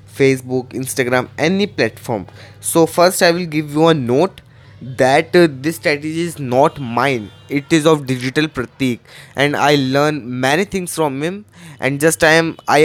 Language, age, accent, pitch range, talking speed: Hindi, 20-39, native, 130-170 Hz, 170 wpm